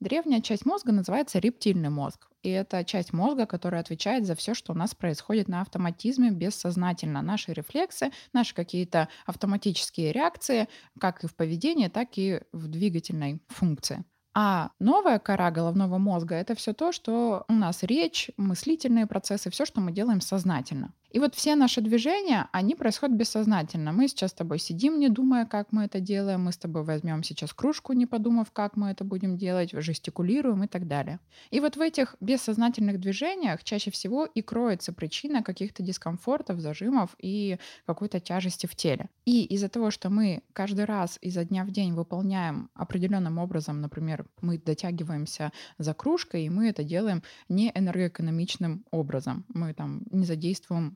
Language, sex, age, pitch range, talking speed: Russian, female, 20-39, 170-230 Hz, 165 wpm